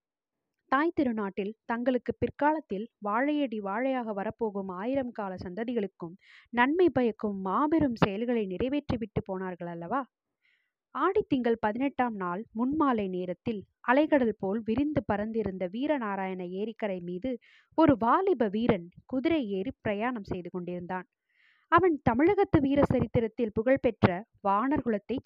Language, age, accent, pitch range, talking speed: Tamil, 20-39, native, 210-285 Hz, 105 wpm